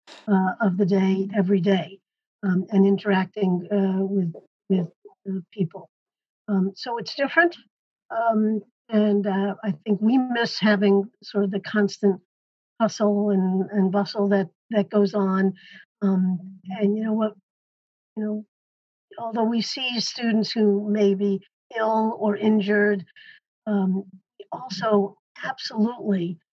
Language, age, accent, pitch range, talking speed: English, 50-69, American, 195-215 Hz, 130 wpm